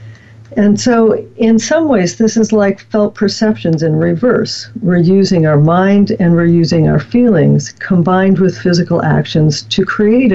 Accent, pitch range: American, 145-195 Hz